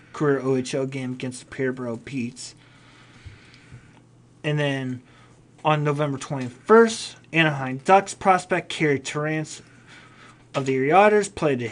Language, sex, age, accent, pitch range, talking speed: English, male, 30-49, American, 130-155 Hz, 115 wpm